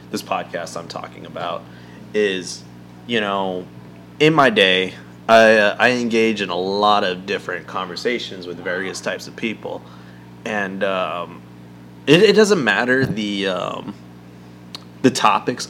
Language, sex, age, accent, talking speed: English, male, 20-39, American, 135 wpm